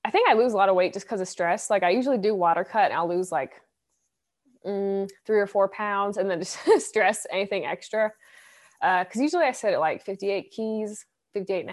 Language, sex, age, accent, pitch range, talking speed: English, female, 20-39, American, 175-215 Hz, 225 wpm